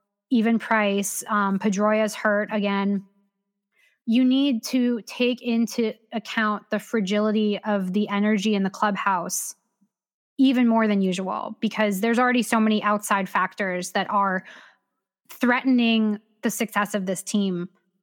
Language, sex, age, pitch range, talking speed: English, female, 20-39, 205-235 Hz, 130 wpm